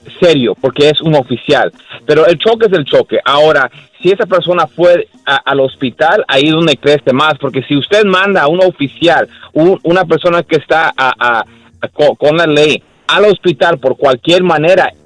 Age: 40-59